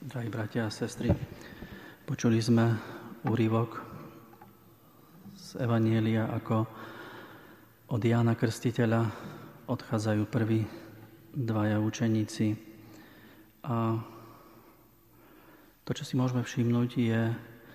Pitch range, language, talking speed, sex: 110-120 Hz, Slovak, 80 wpm, male